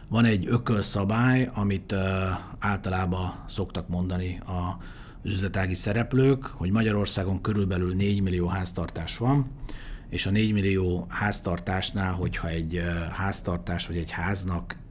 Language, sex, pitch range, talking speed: Hungarian, male, 90-105 Hz, 120 wpm